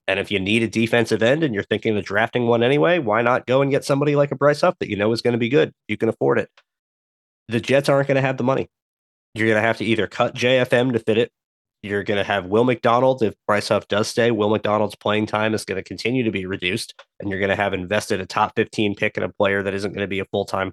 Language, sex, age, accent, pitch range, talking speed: English, male, 30-49, American, 100-120 Hz, 280 wpm